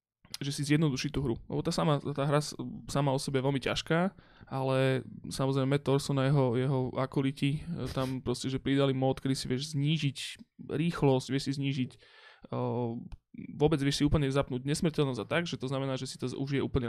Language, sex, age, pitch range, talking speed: Slovak, male, 20-39, 125-140 Hz, 180 wpm